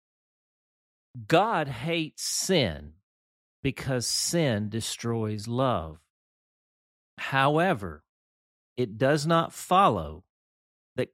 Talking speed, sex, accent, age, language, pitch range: 70 wpm, male, American, 50-69, English, 95-145 Hz